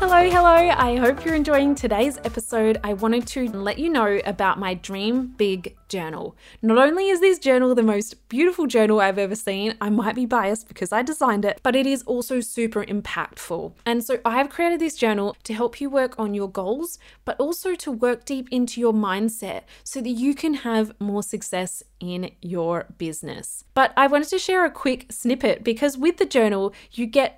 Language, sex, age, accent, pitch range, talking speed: English, female, 20-39, Australian, 210-270 Hz, 200 wpm